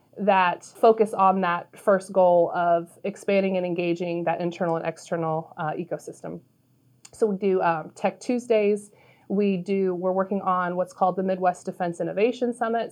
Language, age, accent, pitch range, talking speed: English, 30-49, American, 175-210 Hz, 165 wpm